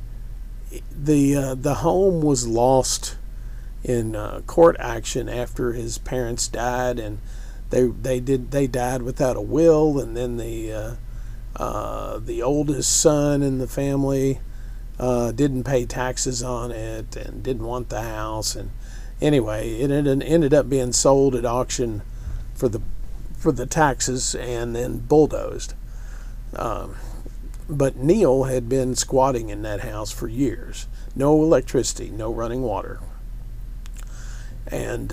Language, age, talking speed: English, 50-69, 135 wpm